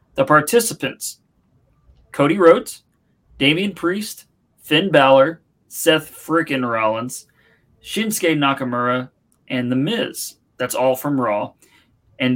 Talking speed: 100 wpm